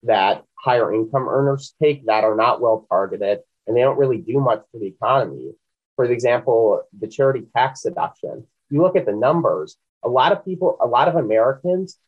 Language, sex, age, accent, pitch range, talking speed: English, male, 30-49, American, 110-145 Hz, 195 wpm